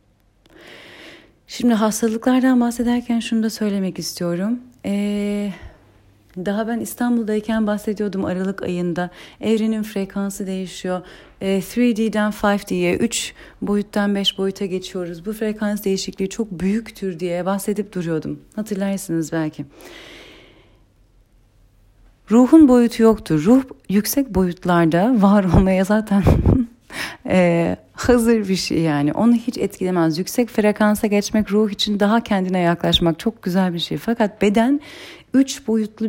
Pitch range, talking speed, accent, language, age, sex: 175-225 Hz, 115 wpm, native, Turkish, 40-59, female